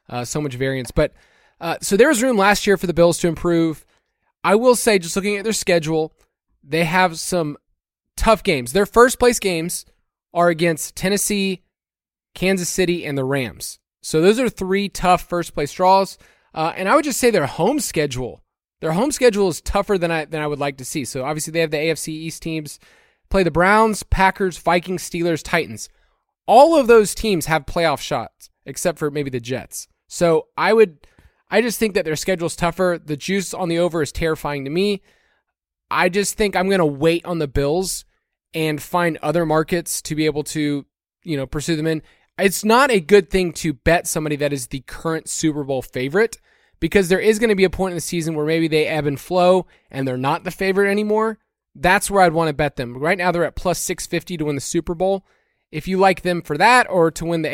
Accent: American